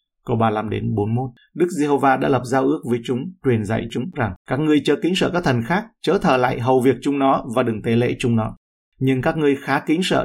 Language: Vietnamese